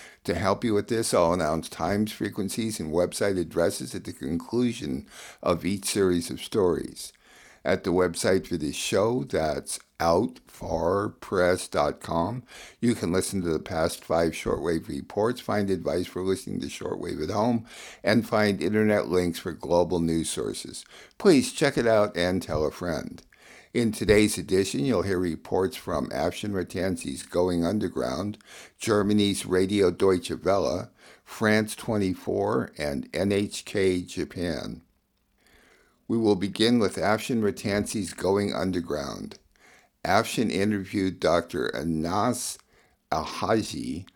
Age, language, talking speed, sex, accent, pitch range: 60-79, English, 130 wpm, male, American, 90-105 Hz